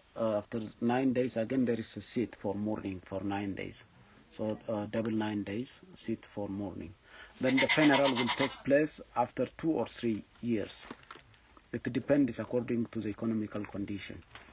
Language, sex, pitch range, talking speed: English, male, 100-120 Hz, 165 wpm